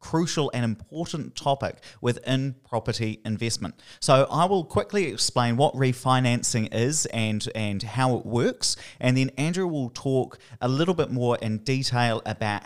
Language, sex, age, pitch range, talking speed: English, male, 30-49, 110-140 Hz, 150 wpm